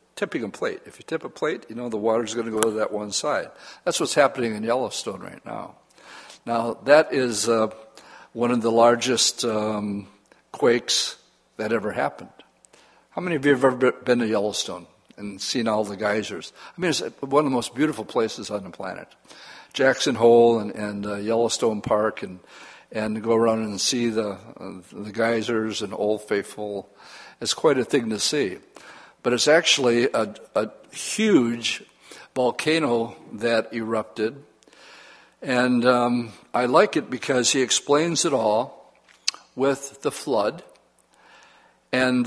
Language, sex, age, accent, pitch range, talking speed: English, male, 60-79, American, 110-135 Hz, 160 wpm